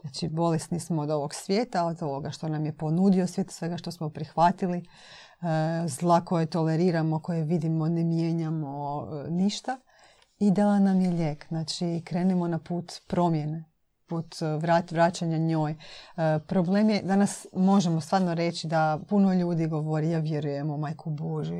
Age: 30-49